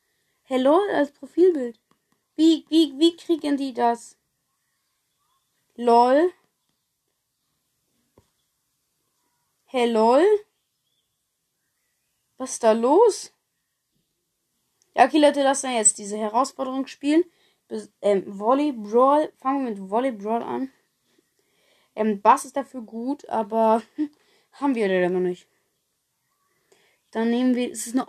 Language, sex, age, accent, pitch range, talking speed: German, female, 20-39, German, 210-275 Hz, 110 wpm